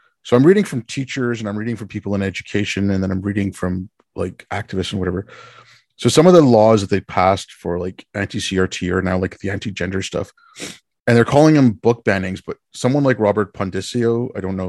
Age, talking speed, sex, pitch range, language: 30-49, 210 wpm, male, 100-120 Hz, English